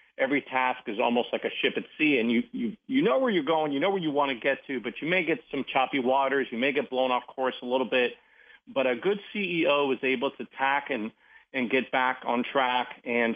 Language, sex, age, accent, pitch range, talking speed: English, male, 40-59, American, 120-150 Hz, 250 wpm